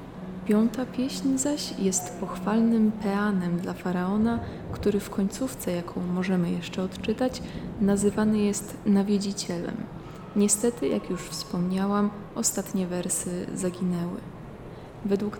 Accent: native